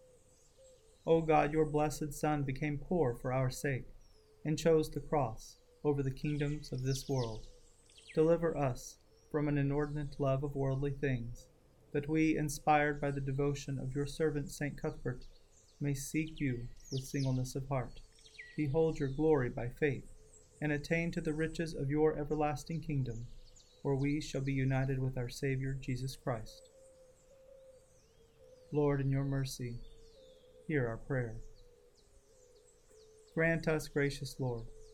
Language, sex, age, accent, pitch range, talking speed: English, male, 30-49, American, 135-160 Hz, 140 wpm